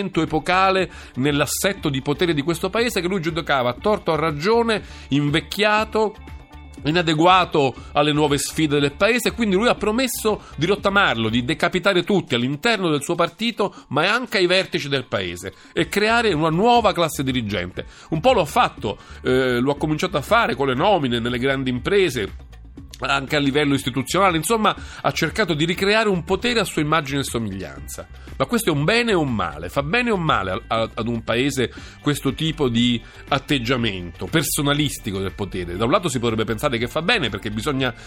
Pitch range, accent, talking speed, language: 120-175 Hz, native, 180 wpm, Italian